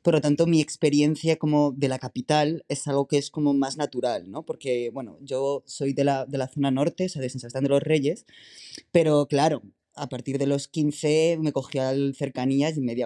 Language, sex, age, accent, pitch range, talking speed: Spanish, female, 20-39, Spanish, 135-160 Hz, 210 wpm